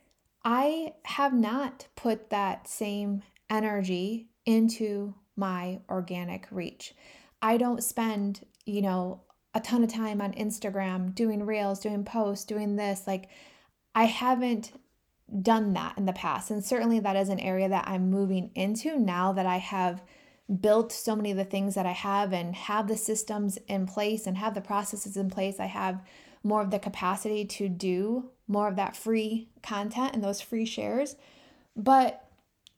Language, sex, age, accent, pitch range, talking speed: English, female, 20-39, American, 200-260 Hz, 165 wpm